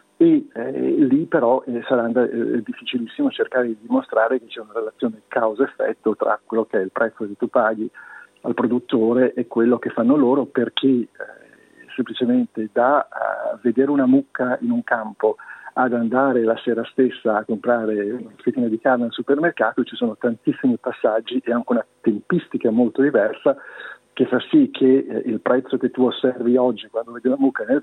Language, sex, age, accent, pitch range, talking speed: Italian, male, 50-69, native, 115-135 Hz, 170 wpm